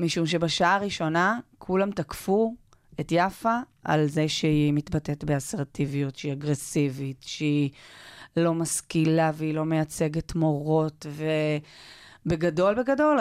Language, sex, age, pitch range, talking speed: Hebrew, female, 30-49, 155-185 Hz, 105 wpm